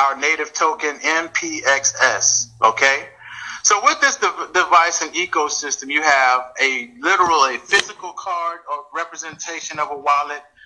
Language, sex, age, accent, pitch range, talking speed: English, male, 30-49, American, 140-165 Hz, 135 wpm